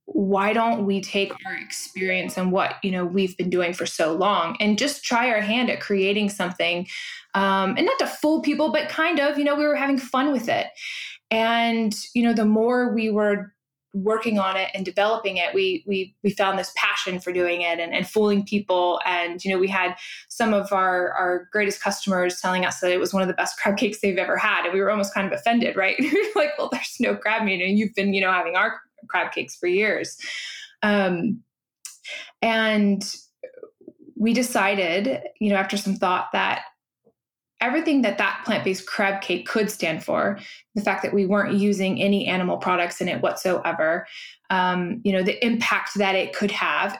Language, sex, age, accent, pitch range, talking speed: English, female, 20-39, American, 190-235 Hz, 200 wpm